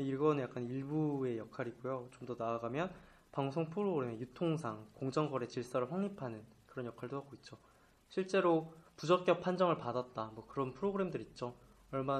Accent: native